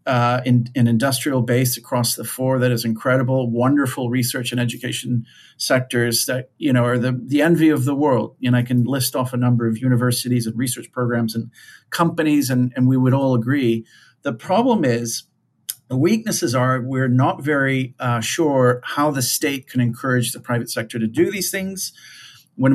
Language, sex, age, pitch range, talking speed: English, male, 50-69, 120-135 Hz, 185 wpm